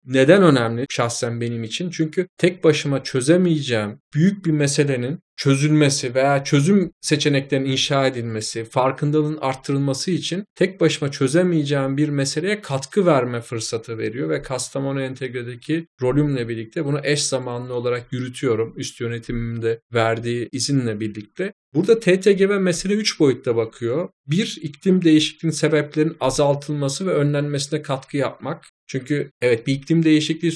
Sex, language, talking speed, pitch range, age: male, Turkish, 130 wpm, 130-165 Hz, 40-59